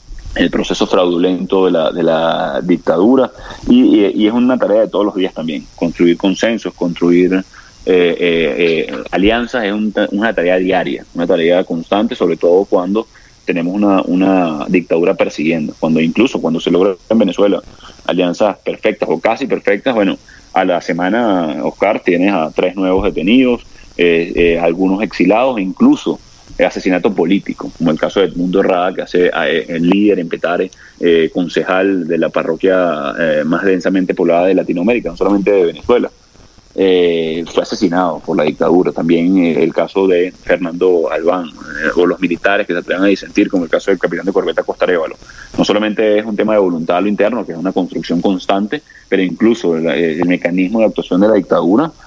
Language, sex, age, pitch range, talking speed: English, male, 30-49, 85-105 Hz, 180 wpm